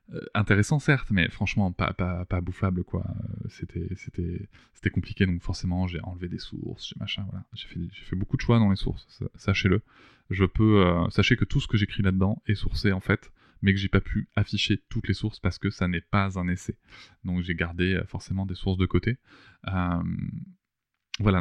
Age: 20-39